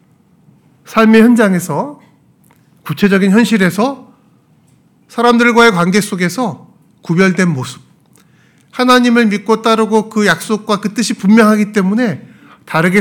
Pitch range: 155-210 Hz